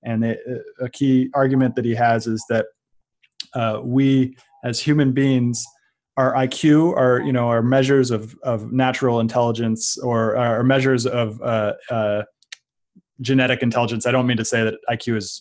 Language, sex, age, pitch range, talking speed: English, male, 20-39, 115-130 Hz, 165 wpm